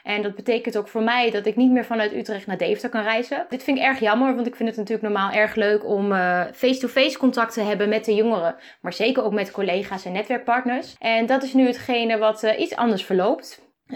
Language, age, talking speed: Dutch, 20-39, 235 wpm